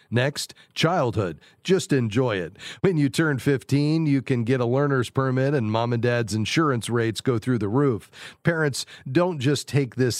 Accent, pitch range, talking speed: American, 120-145 Hz, 175 wpm